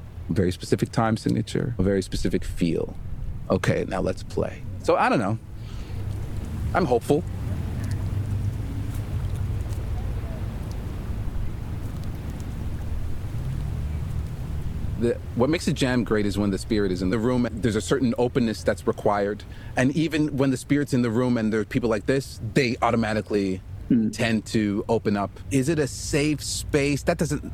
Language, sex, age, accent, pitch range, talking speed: English, male, 40-59, American, 100-130 Hz, 140 wpm